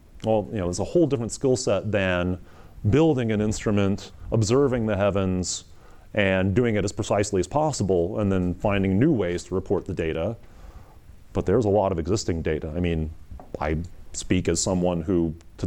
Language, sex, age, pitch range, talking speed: English, male, 30-49, 90-110 Hz, 180 wpm